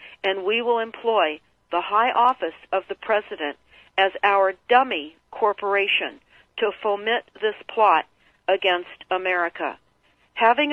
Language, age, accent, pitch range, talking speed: English, 50-69, American, 195-260 Hz, 115 wpm